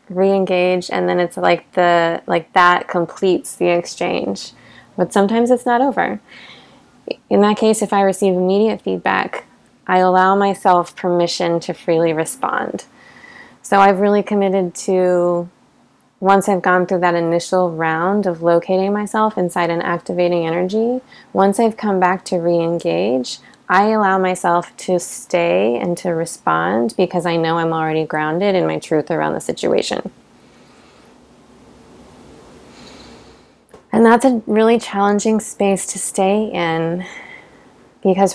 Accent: American